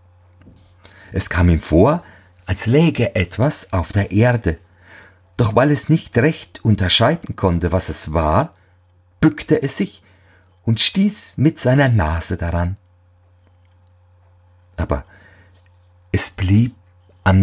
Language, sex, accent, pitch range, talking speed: German, male, German, 90-135 Hz, 115 wpm